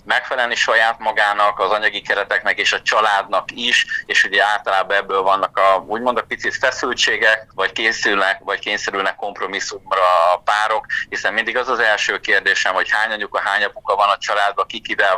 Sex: male